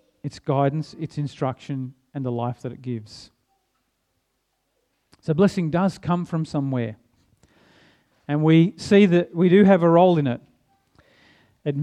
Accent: Australian